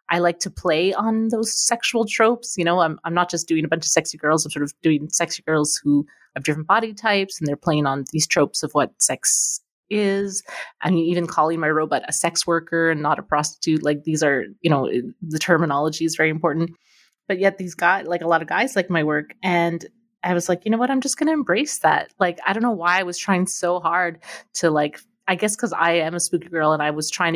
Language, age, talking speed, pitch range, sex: English, 20-39, 250 wpm, 160-195 Hz, female